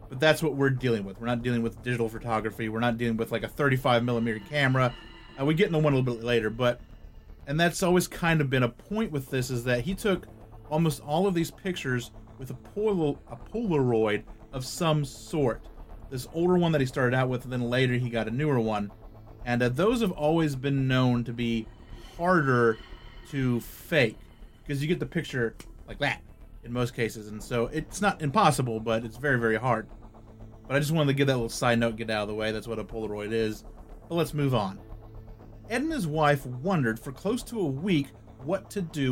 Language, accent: English, American